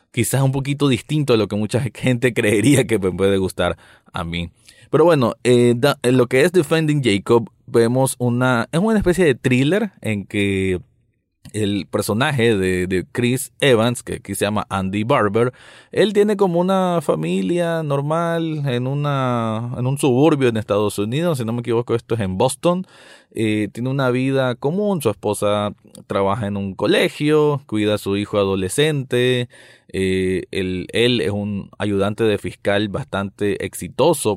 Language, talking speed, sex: Spanish, 165 wpm, male